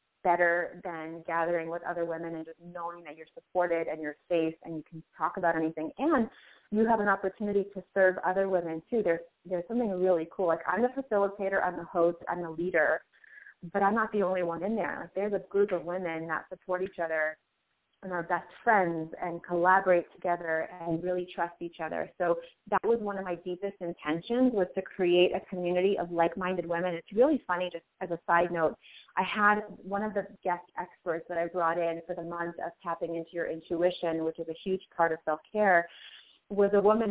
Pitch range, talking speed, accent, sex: 170-200 Hz, 210 wpm, American, female